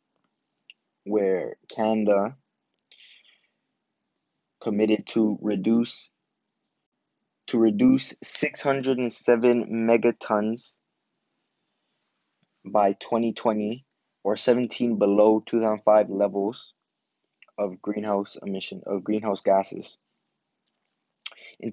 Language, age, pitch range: English, 20-39, 95-110 Hz